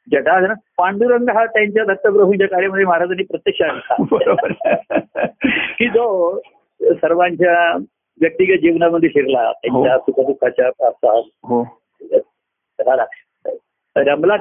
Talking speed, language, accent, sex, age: 65 wpm, Marathi, native, male, 50-69